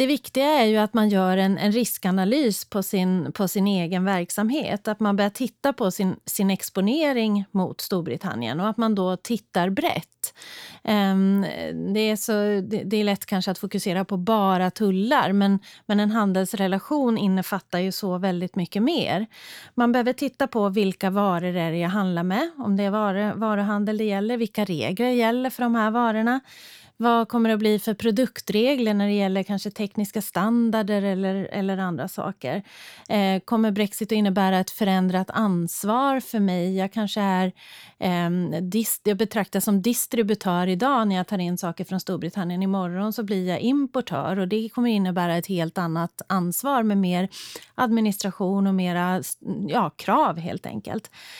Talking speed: 170 wpm